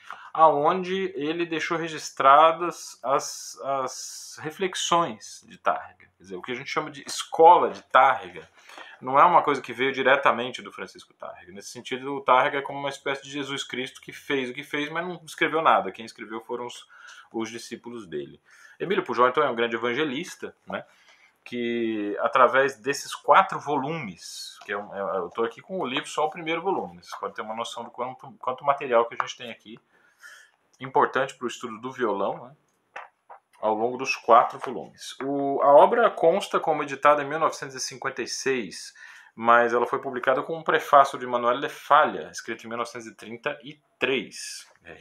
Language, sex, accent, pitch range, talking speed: Portuguese, male, Brazilian, 120-150 Hz, 170 wpm